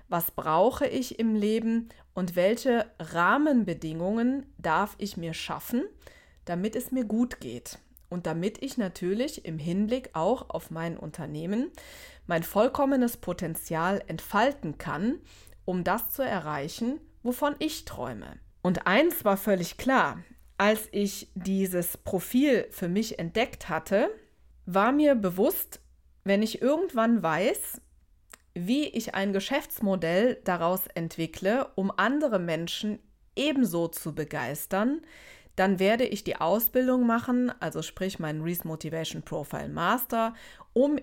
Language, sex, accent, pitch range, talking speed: German, female, German, 175-245 Hz, 125 wpm